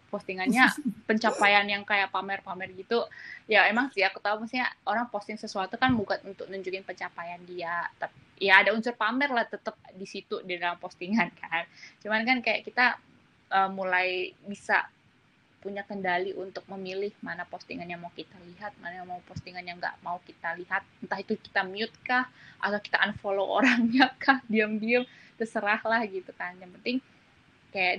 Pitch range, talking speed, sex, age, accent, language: 185-230 Hz, 165 wpm, female, 20-39, native, Indonesian